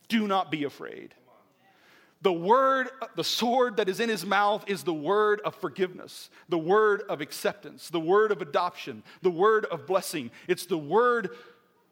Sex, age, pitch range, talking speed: male, 40-59, 205-265 Hz, 165 wpm